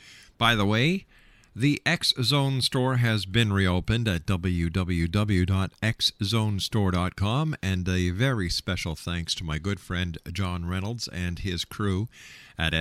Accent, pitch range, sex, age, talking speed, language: American, 90-120 Hz, male, 50-69, 120 wpm, English